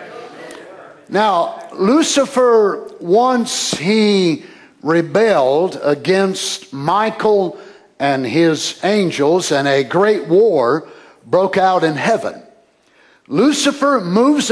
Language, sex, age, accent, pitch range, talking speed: English, male, 60-79, American, 180-245 Hz, 85 wpm